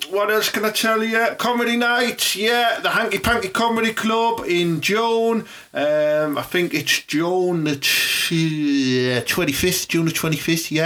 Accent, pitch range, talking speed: British, 125-175 Hz, 140 wpm